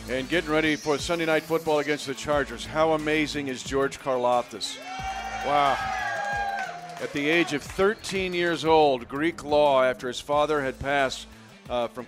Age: 40-59